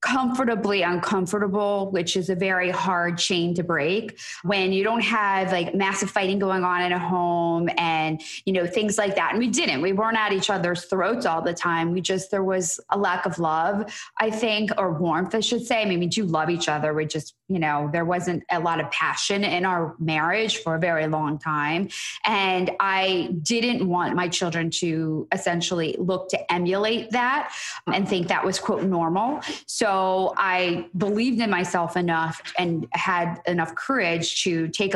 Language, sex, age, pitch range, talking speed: English, female, 20-39, 175-205 Hz, 190 wpm